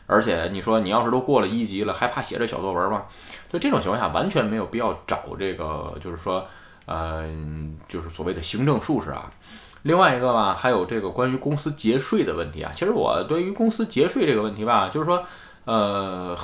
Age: 20-39